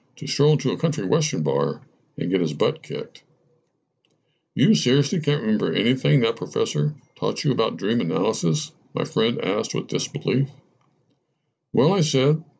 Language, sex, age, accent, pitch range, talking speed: English, male, 60-79, American, 120-165 Hz, 150 wpm